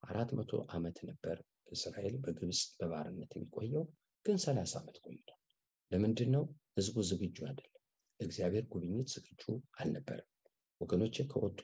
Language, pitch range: English, 95-130 Hz